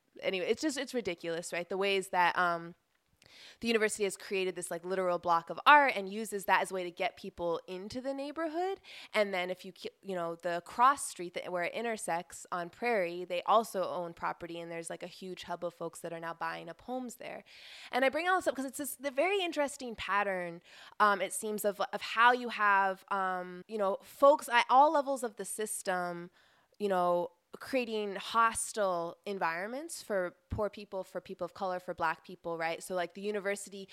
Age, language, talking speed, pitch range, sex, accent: 20-39, English, 205 wpm, 180-240 Hz, female, American